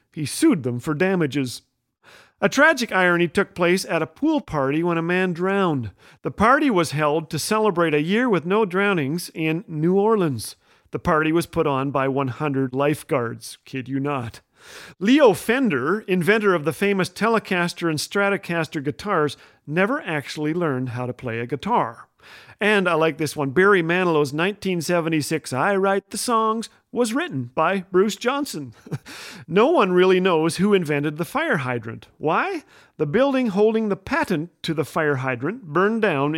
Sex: male